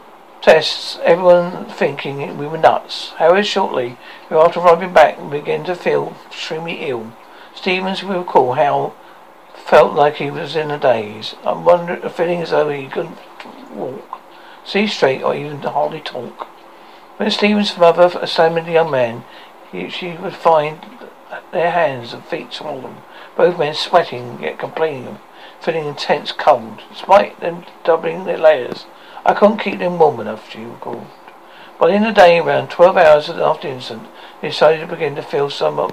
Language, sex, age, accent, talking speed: English, male, 60-79, British, 165 wpm